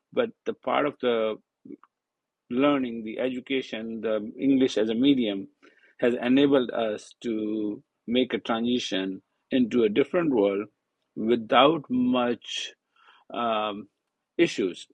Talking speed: 115 wpm